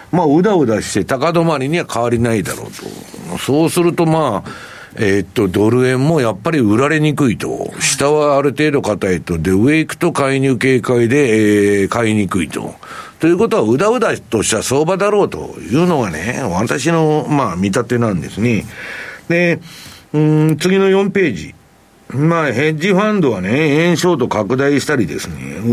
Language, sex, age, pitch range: Japanese, male, 60-79, 105-155 Hz